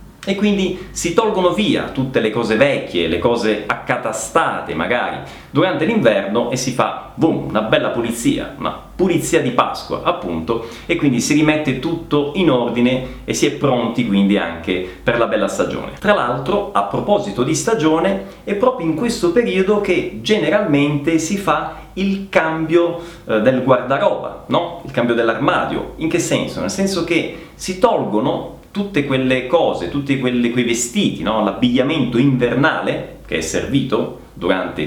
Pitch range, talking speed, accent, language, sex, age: 120-185 Hz, 155 wpm, native, Italian, male, 30-49